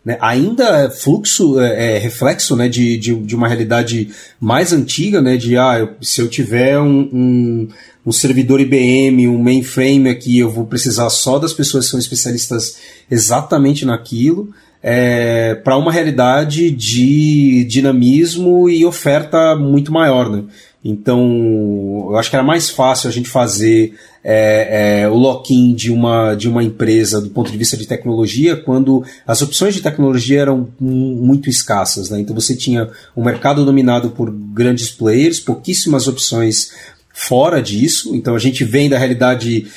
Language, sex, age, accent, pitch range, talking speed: Portuguese, male, 30-49, Brazilian, 115-135 Hz, 150 wpm